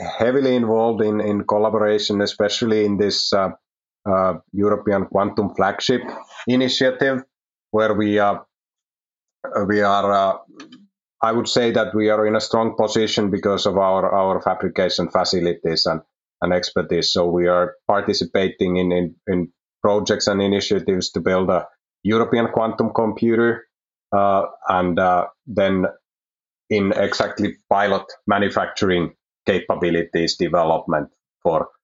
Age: 30-49